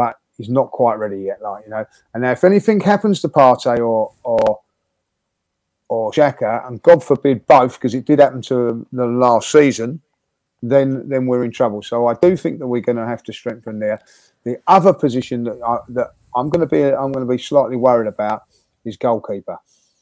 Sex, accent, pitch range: male, British, 110-135 Hz